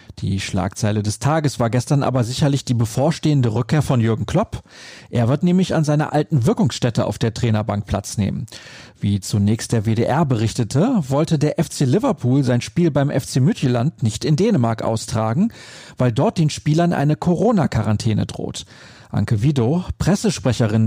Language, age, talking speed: German, 40-59, 155 wpm